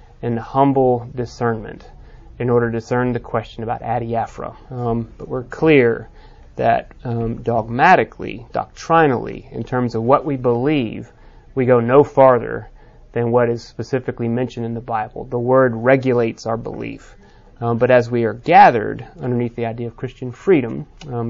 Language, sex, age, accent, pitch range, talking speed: English, male, 30-49, American, 120-145 Hz, 155 wpm